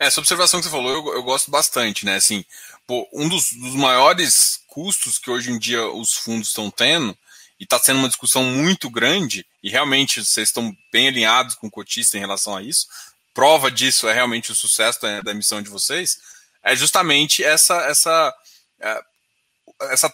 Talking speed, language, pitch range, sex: 190 wpm, Portuguese, 120-175 Hz, male